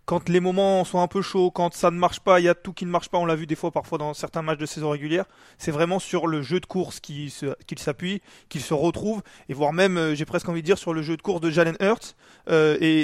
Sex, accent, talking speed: male, French, 295 wpm